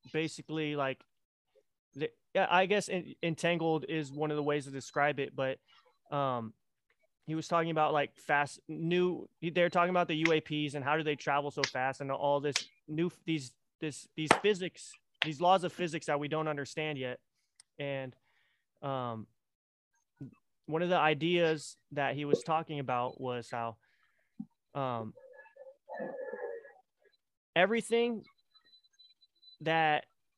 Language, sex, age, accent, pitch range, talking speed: English, male, 20-39, American, 140-175 Hz, 135 wpm